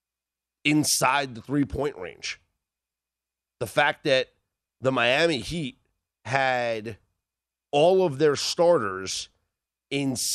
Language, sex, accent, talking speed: English, male, American, 95 wpm